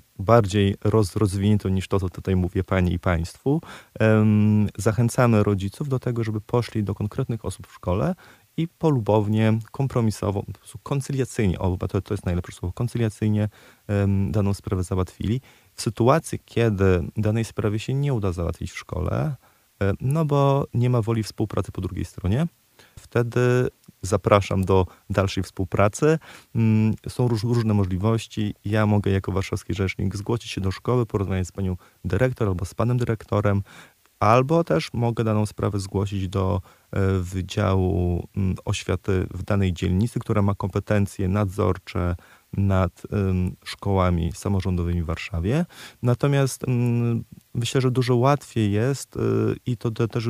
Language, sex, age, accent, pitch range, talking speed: Polish, male, 30-49, native, 95-120 Hz, 130 wpm